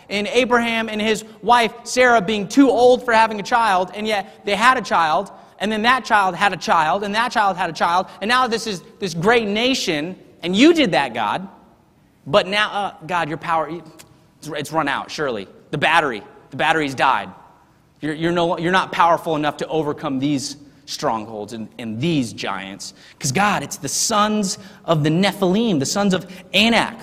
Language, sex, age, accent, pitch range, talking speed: English, male, 30-49, American, 160-225 Hz, 190 wpm